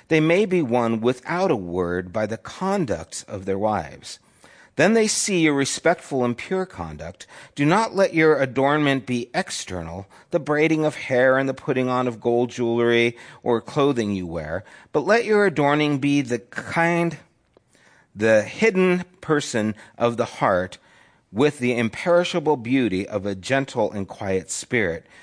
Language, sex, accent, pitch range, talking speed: English, male, American, 105-160 Hz, 155 wpm